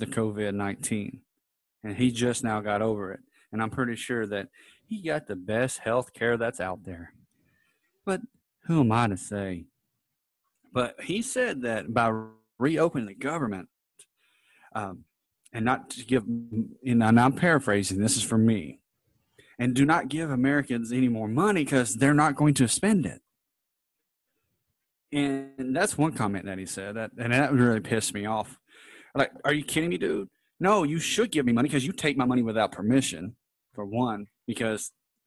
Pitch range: 110-145 Hz